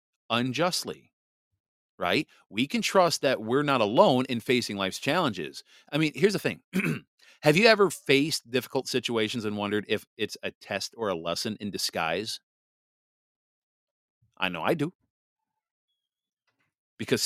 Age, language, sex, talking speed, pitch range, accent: 40-59, English, male, 140 wpm, 105-125 Hz, American